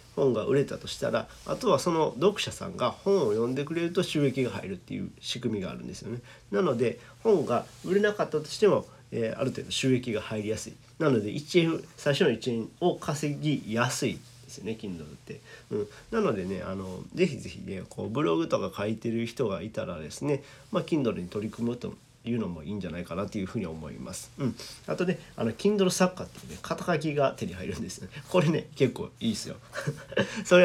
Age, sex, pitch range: 40-59, male, 110-155 Hz